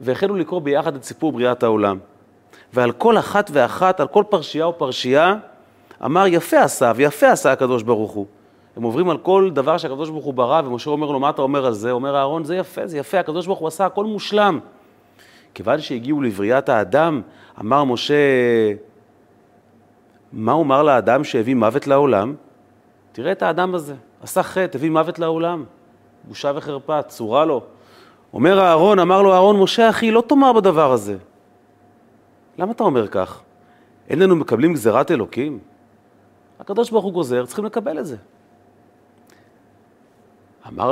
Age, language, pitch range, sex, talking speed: 30-49, Hebrew, 120-175 Hz, male, 155 wpm